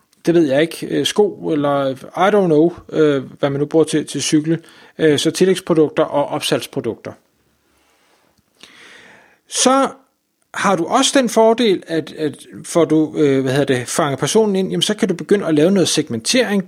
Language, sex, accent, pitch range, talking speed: Danish, male, native, 150-200 Hz, 165 wpm